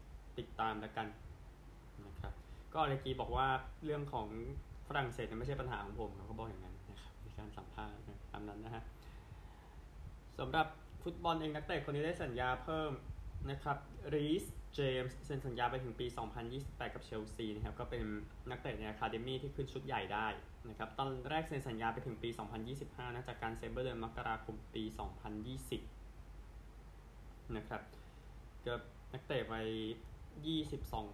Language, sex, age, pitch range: Thai, male, 20-39, 105-125 Hz